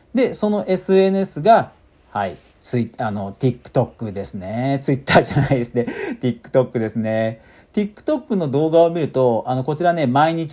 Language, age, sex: Japanese, 50-69, male